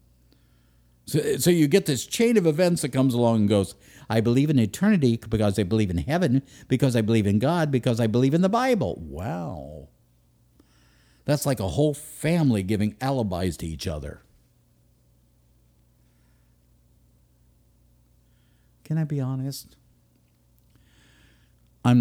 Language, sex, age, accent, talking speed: English, male, 60-79, American, 135 wpm